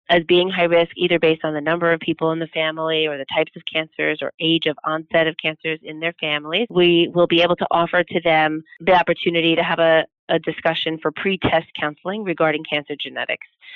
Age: 30-49